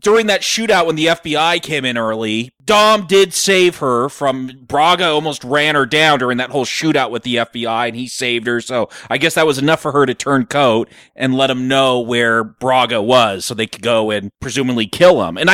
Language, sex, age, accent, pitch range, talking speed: English, male, 30-49, American, 125-175 Hz, 220 wpm